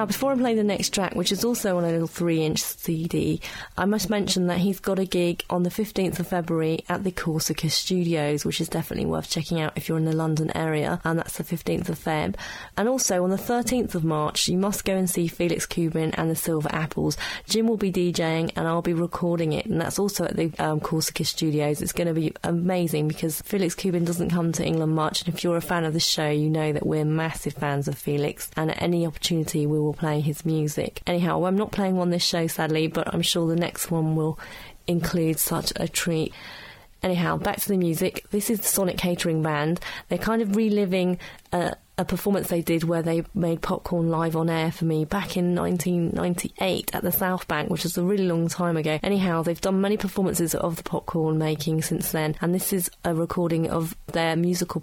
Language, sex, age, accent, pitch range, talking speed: English, female, 30-49, British, 160-185 Hz, 225 wpm